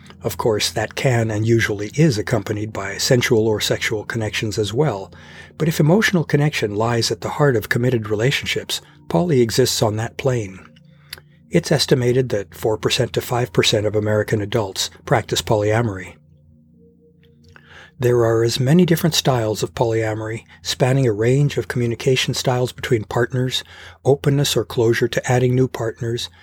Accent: American